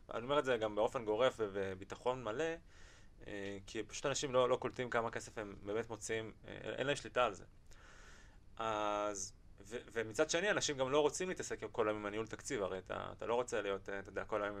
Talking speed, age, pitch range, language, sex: 195 wpm, 20-39, 100-130 Hz, Hebrew, male